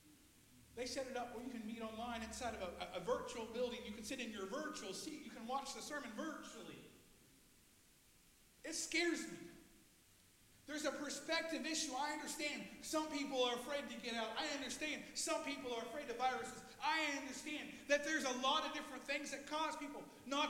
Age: 40-59